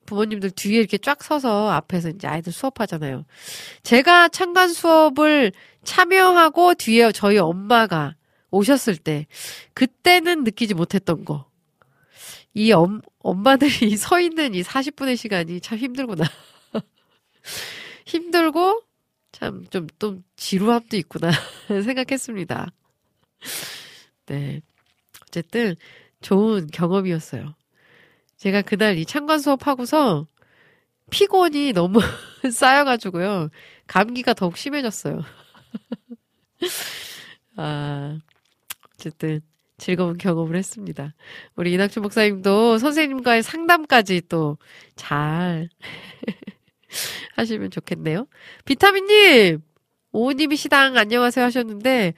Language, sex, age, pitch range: Korean, female, 40-59, 165-270 Hz